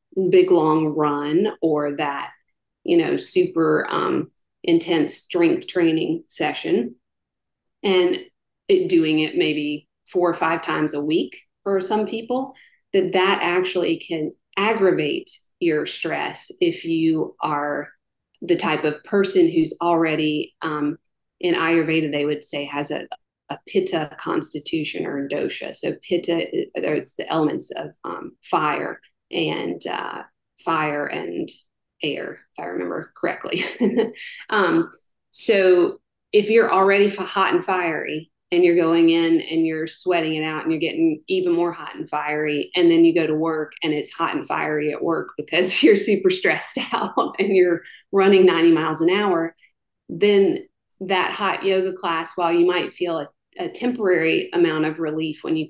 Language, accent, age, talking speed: English, American, 40-59, 150 wpm